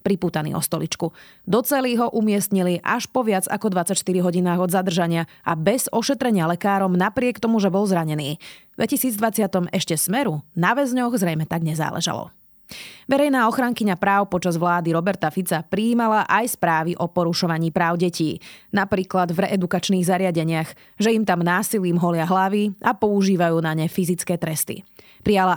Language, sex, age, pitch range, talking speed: Slovak, female, 30-49, 175-215 Hz, 150 wpm